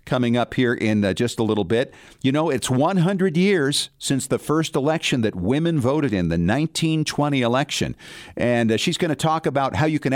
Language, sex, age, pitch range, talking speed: English, male, 50-69, 110-155 Hz, 205 wpm